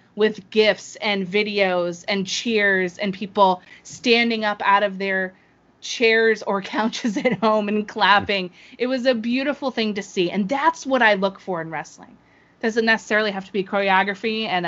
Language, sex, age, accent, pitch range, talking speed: English, female, 20-39, American, 190-265 Hz, 170 wpm